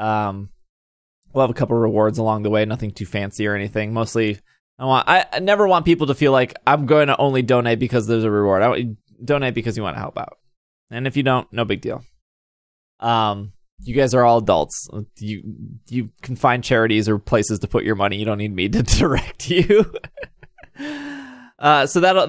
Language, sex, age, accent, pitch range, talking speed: English, male, 20-39, American, 110-140 Hz, 210 wpm